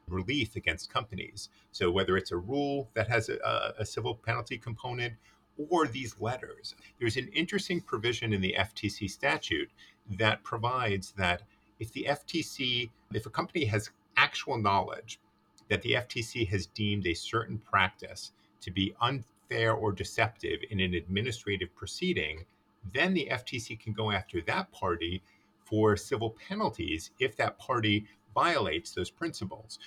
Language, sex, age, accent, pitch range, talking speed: English, male, 50-69, American, 100-130 Hz, 145 wpm